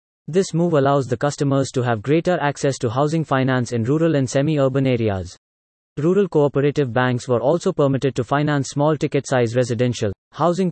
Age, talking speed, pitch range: 20-39, 175 wpm, 120-155 Hz